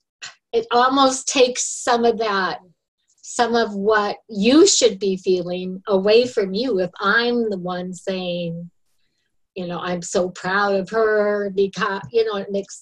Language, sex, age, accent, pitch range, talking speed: English, female, 50-69, American, 180-215 Hz, 155 wpm